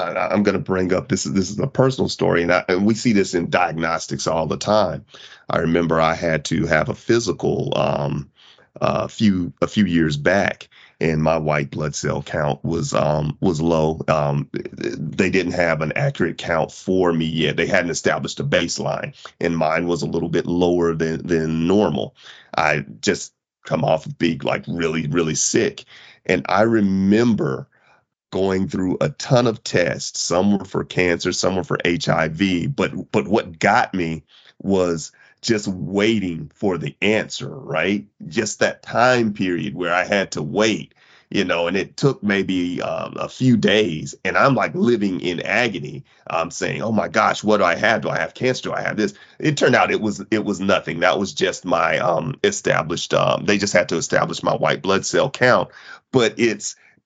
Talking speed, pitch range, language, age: 190 wpm, 80-100 Hz, English, 30-49